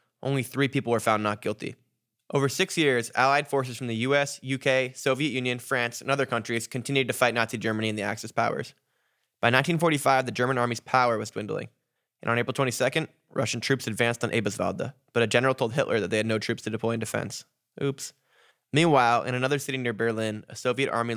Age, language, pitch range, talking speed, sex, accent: 10-29, English, 110-135 Hz, 205 wpm, male, American